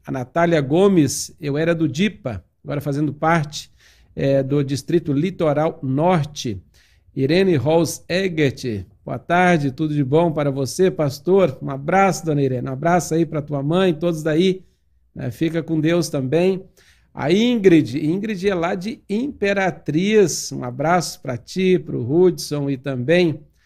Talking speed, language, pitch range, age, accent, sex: 135 wpm, Portuguese, 140-175 Hz, 50-69, Brazilian, male